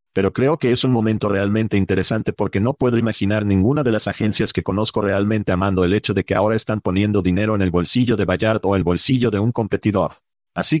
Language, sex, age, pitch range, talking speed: Spanish, male, 50-69, 95-115 Hz, 220 wpm